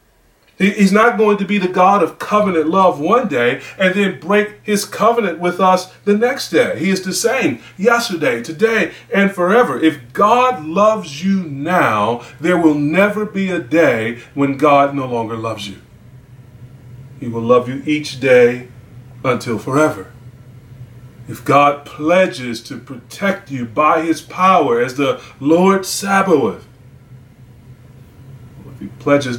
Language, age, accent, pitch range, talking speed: English, 30-49, American, 120-170 Hz, 145 wpm